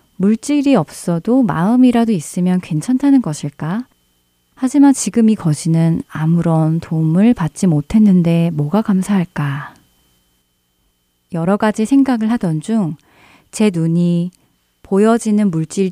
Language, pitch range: Korean, 155-210 Hz